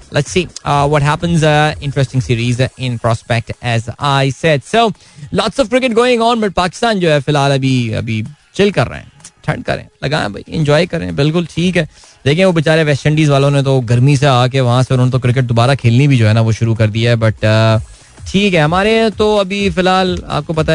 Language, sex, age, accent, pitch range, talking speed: Hindi, male, 20-39, native, 125-175 Hz, 235 wpm